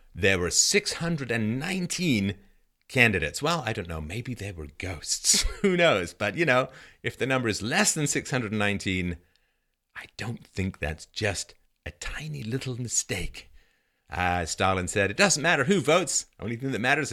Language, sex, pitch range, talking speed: English, male, 85-125 Hz, 160 wpm